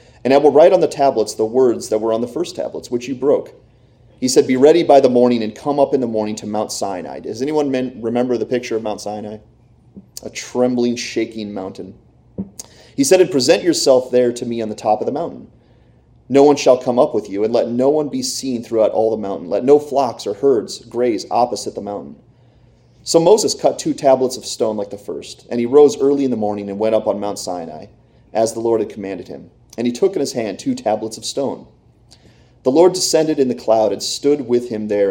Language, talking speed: English, 230 wpm